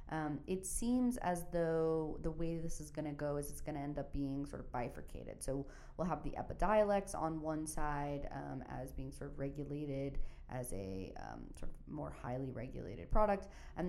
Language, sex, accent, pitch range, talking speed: English, female, American, 135-160 Hz, 200 wpm